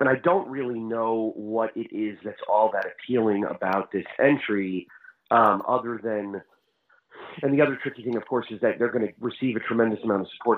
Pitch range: 95-115 Hz